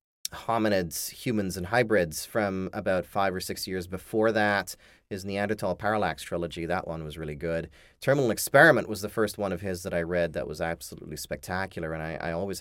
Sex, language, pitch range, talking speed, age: male, English, 85-110 Hz, 190 wpm, 30-49